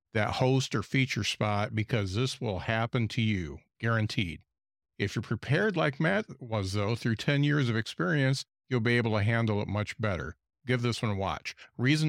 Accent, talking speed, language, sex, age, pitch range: American, 190 wpm, English, male, 50-69, 105-130 Hz